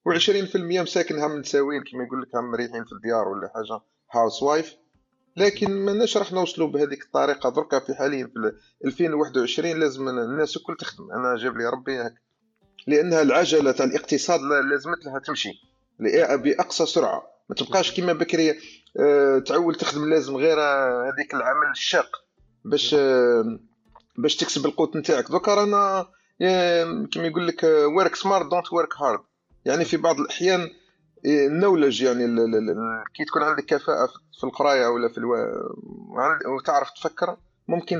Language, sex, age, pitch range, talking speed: Arabic, male, 30-49, 130-175 Hz, 135 wpm